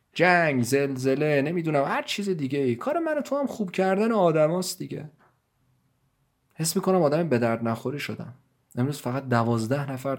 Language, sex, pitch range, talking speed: Persian, male, 120-170 Hz, 145 wpm